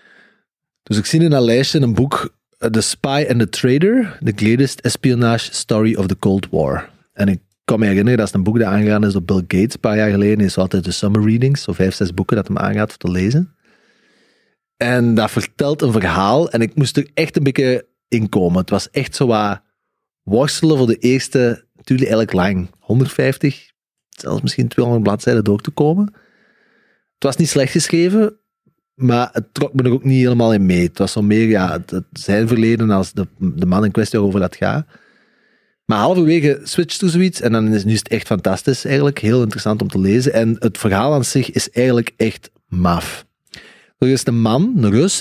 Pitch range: 105-140 Hz